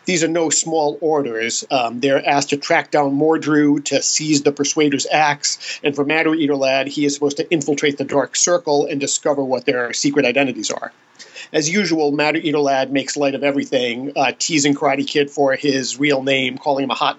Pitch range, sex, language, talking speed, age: 135-155 Hz, male, English, 205 wpm, 40-59